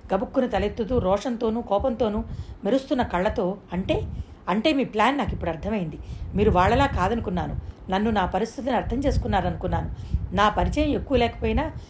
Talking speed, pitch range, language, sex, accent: 125 wpm, 190-245 Hz, Telugu, female, native